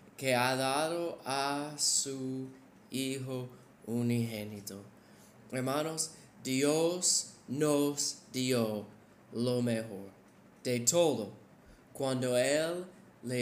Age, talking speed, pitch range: 20-39, 80 wpm, 125-155 Hz